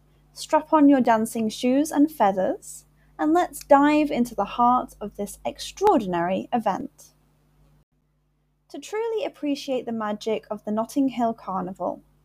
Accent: British